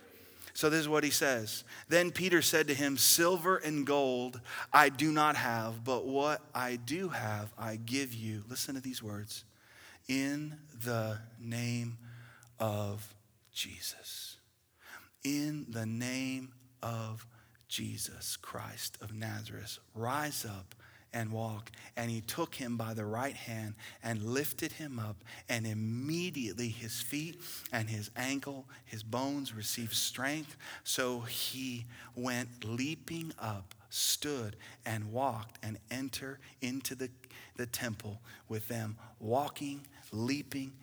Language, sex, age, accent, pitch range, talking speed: English, male, 40-59, American, 115-140 Hz, 130 wpm